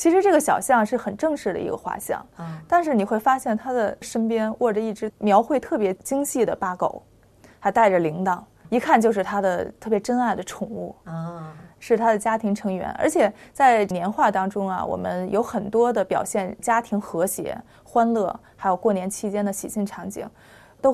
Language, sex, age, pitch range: Chinese, female, 30-49, 195-245 Hz